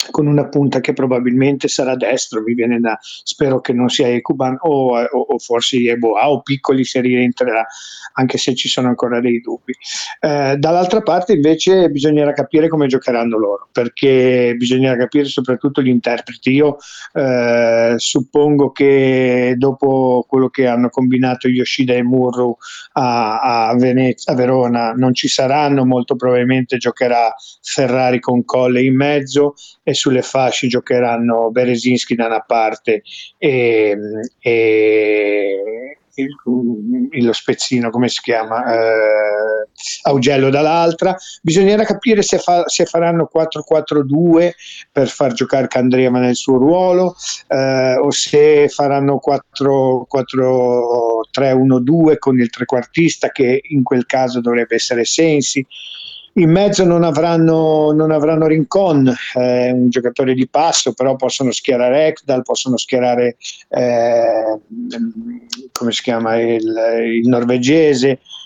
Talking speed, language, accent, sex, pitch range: 125 wpm, Italian, native, male, 120-145 Hz